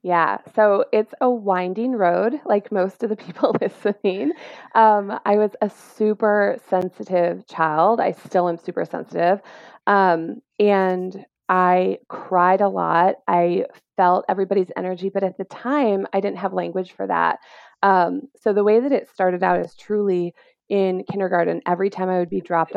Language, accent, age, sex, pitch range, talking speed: English, American, 20-39, female, 180-210 Hz, 165 wpm